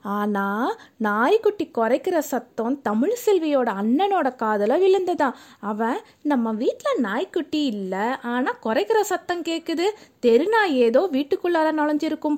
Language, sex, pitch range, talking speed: Tamil, female, 235-325 Hz, 105 wpm